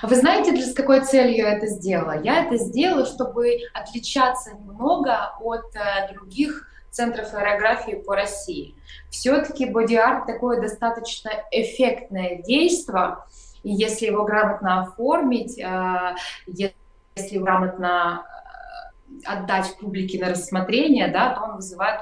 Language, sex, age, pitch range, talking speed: Russian, female, 20-39, 195-240 Hz, 115 wpm